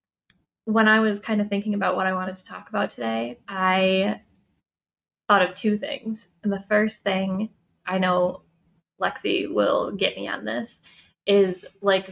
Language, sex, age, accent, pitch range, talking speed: English, female, 10-29, American, 180-210 Hz, 165 wpm